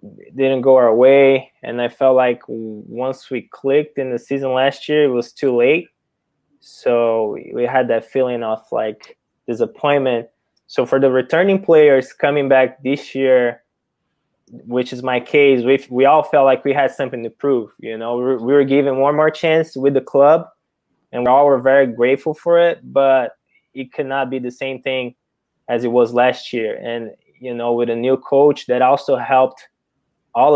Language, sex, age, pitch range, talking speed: English, male, 20-39, 120-135 Hz, 185 wpm